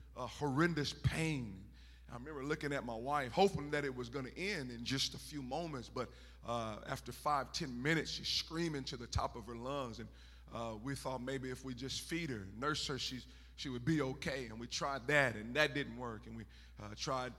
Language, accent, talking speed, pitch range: English, American, 220 wpm, 110-145 Hz